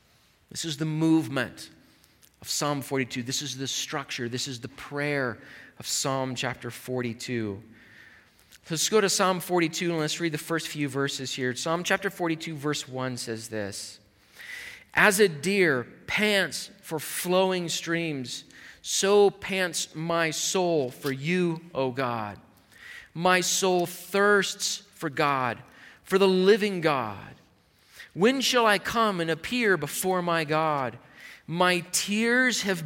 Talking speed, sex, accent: 135 wpm, male, American